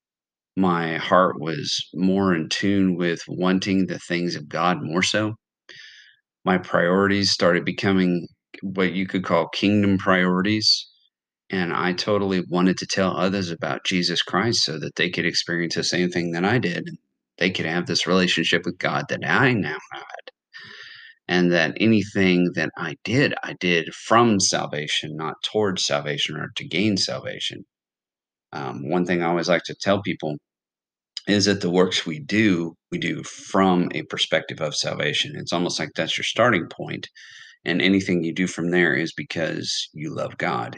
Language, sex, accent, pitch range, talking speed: English, male, American, 85-95 Hz, 165 wpm